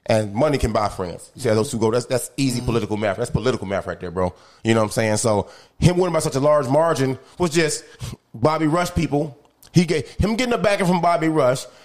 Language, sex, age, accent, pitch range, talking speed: English, male, 30-49, American, 115-155 Hz, 250 wpm